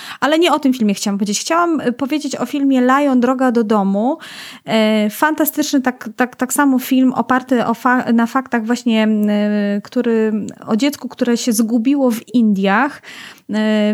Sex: female